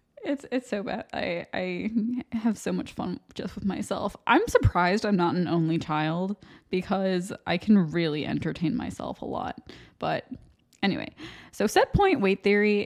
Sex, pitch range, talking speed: female, 175-220 Hz, 165 wpm